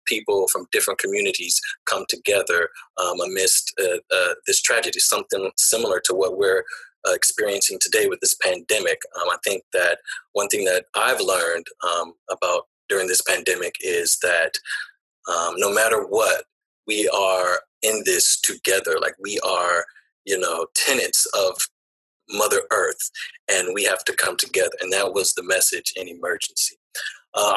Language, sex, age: English, male, 30-49